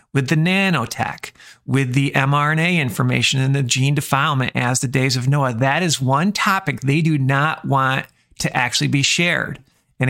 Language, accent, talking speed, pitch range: English, American, 170 wpm, 130-145 Hz